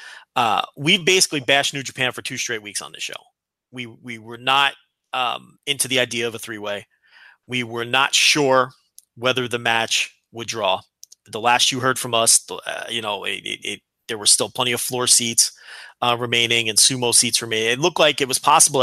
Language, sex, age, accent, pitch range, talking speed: English, male, 30-49, American, 120-160 Hz, 205 wpm